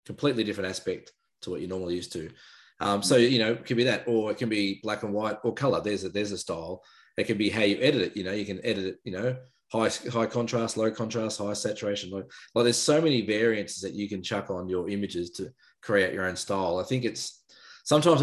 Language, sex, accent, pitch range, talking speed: English, male, Australian, 95-115 Hz, 245 wpm